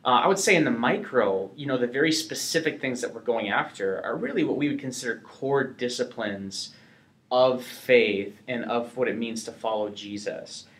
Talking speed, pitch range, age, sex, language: 195 wpm, 115-140 Hz, 30-49, male, English